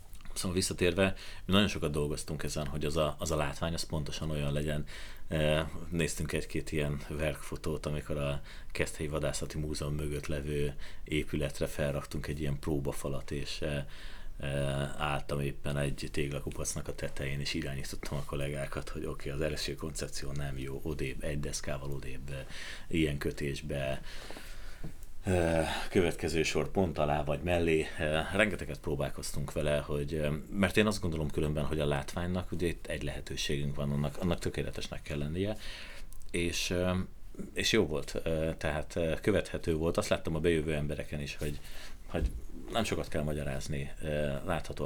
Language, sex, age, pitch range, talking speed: Hungarian, male, 30-49, 70-85 Hz, 140 wpm